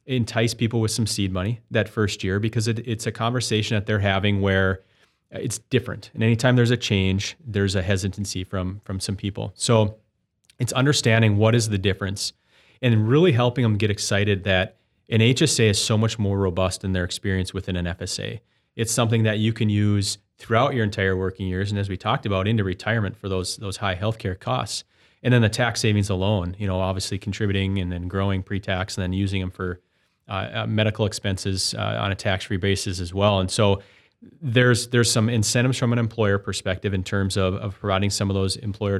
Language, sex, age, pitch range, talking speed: English, male, 30-49, 95-110 Hz, 200 wpm